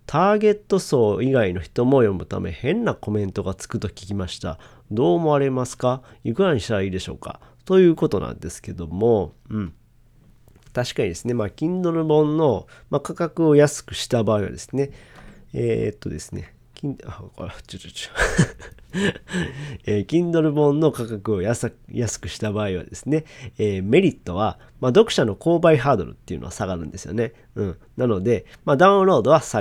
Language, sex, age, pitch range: Japanese, male, 40-59, 105-155 Hz